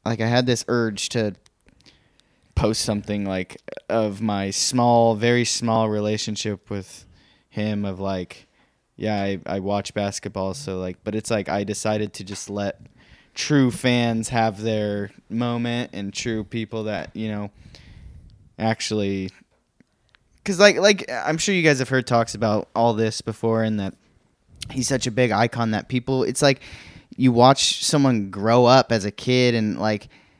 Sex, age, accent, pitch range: male, 10-29, American, 105-125 Hz